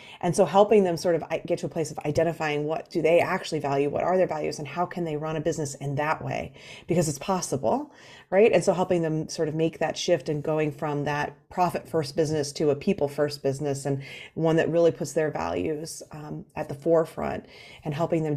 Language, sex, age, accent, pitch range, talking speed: English, female, 30-49, American, 150-180 Hz, 230 wpm